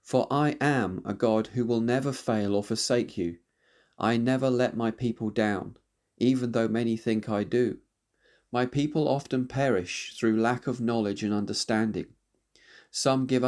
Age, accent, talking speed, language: 40-59, British, 160 wpm, English